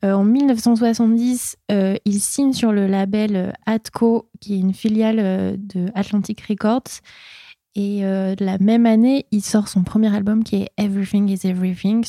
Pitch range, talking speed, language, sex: 190-225 Hz, 160 wpm, French, female